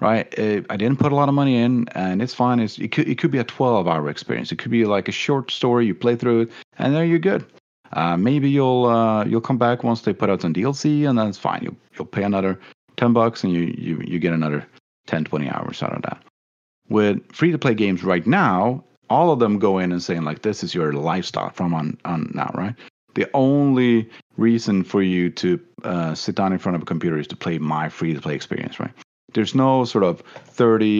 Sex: male